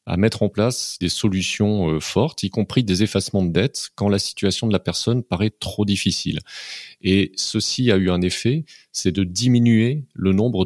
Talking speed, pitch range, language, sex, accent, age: 185 wpm, 90-105 Hz, French, male, French, 30-49